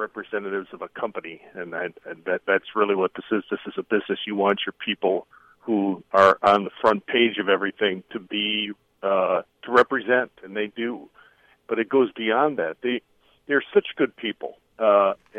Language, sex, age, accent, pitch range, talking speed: English, male, 50-69, American, 105-130 Hz, 170 wpm